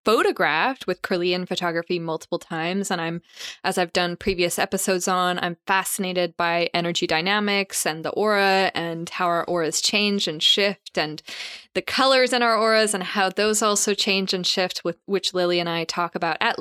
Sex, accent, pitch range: female, American, 175-210 Hz